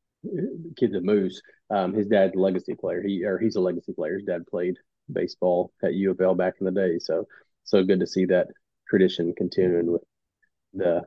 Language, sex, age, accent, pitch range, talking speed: English, male, 30-49, American, 100-115 Hz, 190 wpm